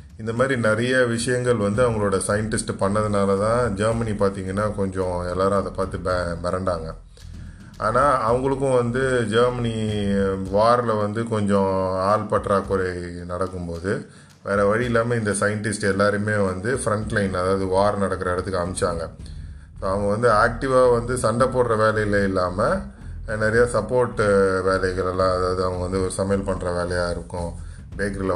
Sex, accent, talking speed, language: male, native, 130 wpm, Tamil